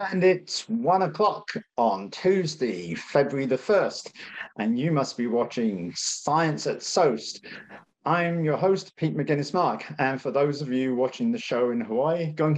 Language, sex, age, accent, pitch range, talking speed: English, male, 50-69, British, 125-175 Hz, 155 wpm